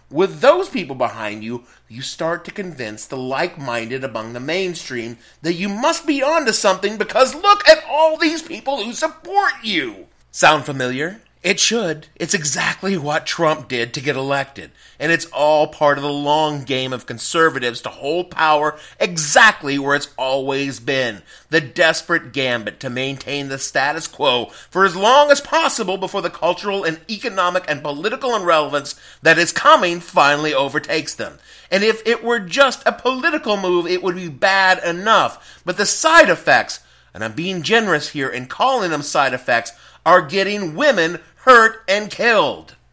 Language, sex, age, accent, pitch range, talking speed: English, male, 30-49, American, 140-195 Hz, 170 wpm